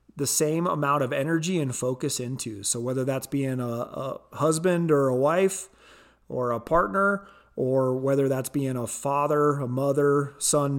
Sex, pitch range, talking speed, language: male, 130-170 Hz, 165 wpm, English